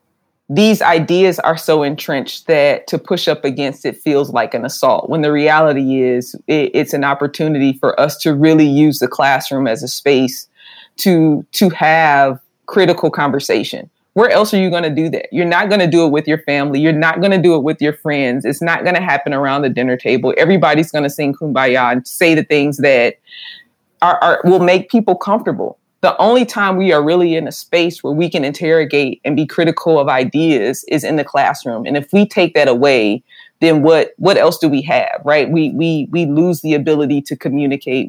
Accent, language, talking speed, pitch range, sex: American, English, 210 wpm, 140-170 Hz, female